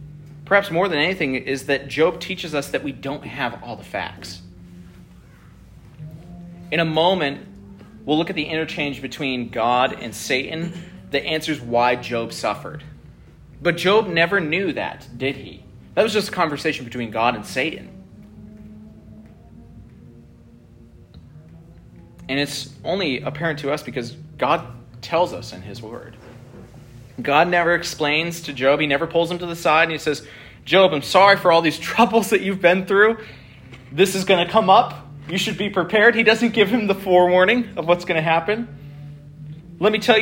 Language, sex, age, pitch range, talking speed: English, male, 30-49, 135-195 Hz, 165 wpm